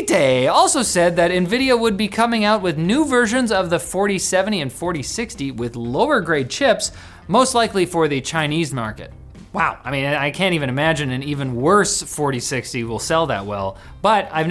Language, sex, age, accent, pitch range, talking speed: English, male, 30-49, American, 145-210 Hz, 180 wpm